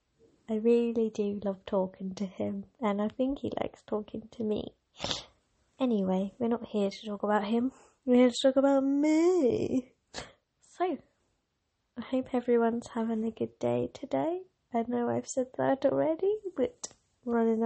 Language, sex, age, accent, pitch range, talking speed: English, female, 20-39, British, 210-255 Hz, 155 wpm